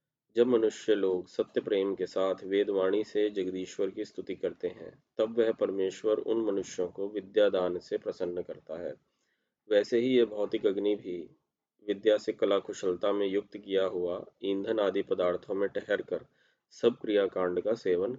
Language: Hindi